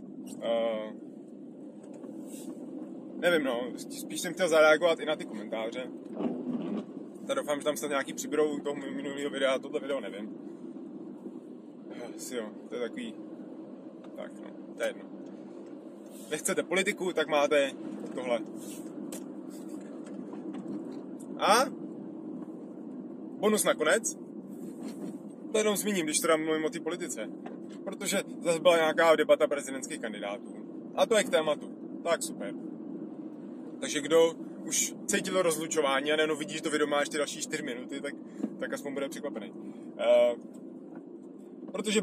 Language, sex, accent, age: Czech, male, native, 30-49